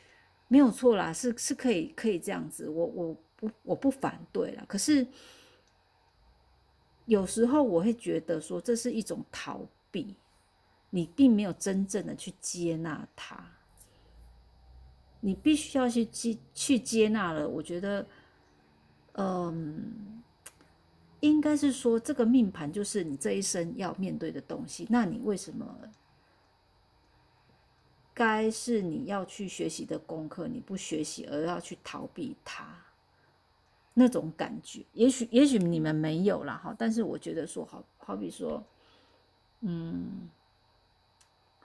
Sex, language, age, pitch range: female, Chinese, 50-69, 160-230 Hz